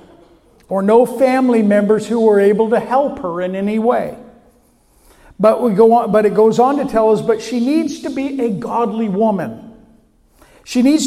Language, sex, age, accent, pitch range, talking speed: English, male, 50-69, American, 205-255 Hz, 185 wpm